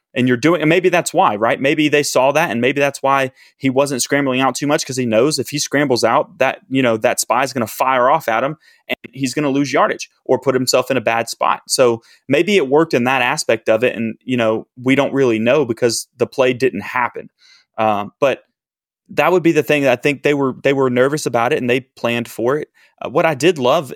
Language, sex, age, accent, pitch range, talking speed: English, male, 30-49, American, 120-140 Hz, 255 wpm